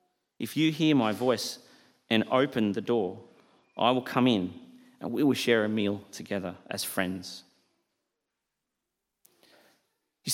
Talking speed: 135 wpm